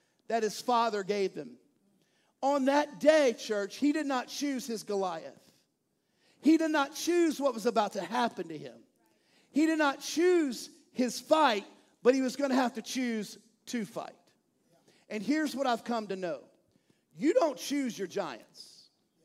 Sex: male